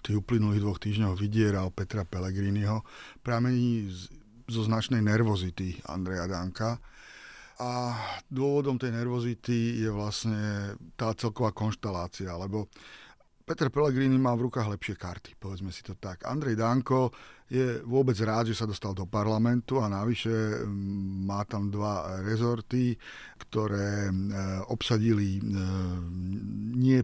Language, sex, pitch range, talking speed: Slovak, male, 105-130 Hz, 120 wpm